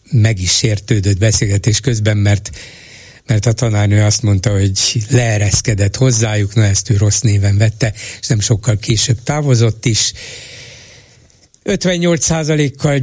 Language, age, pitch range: Hungarian, 60-79, 110-125 Hz